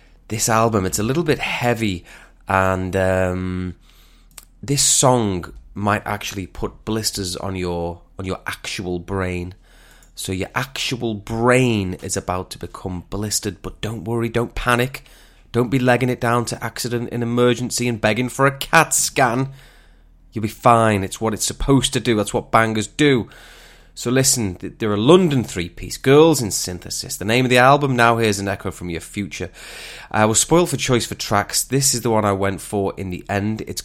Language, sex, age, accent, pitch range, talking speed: English, male, 20-39, British, 95-125 Hz, 185 wpm